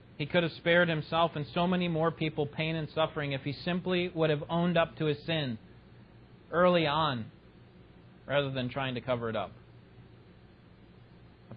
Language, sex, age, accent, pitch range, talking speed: English, male, 30-49, American, 120-155 Hz, 170 wpm